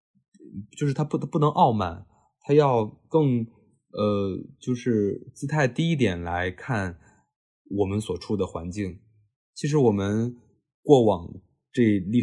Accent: native